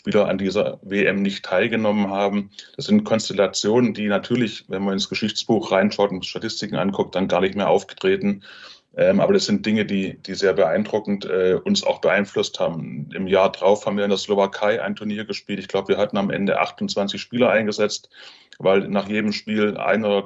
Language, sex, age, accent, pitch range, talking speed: German, male, 20-39, German, 100-115 Hz, 185 wpm